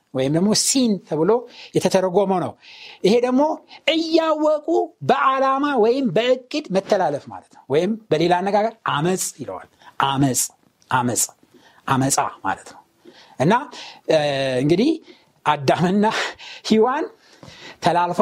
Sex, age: male, 60-79